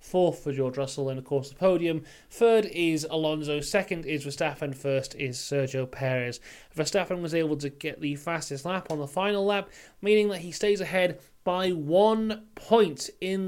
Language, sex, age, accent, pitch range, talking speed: English, male, 30-49, British, 140-180 Hz, 180 wpm